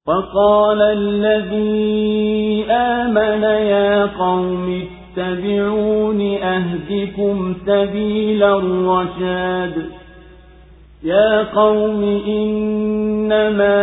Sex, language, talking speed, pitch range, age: male, Swahili, 50 wpm, 165-205 Hz, 40-59